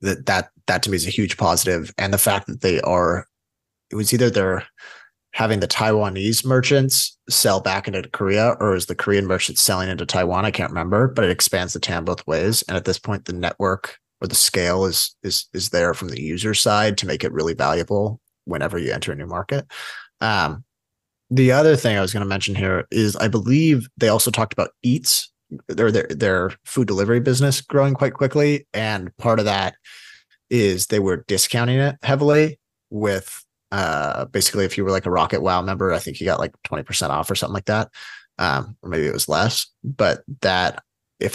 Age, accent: 30-49, American